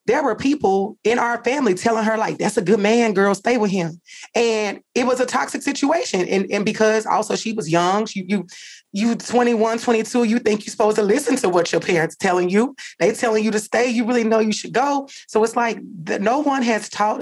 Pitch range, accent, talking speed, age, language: 175-225 Hz, American, 225 wpm, 30-49, English